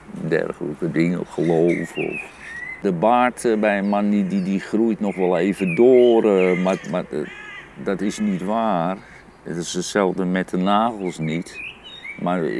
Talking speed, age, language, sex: 140 wpm, 50-69, Dutch, male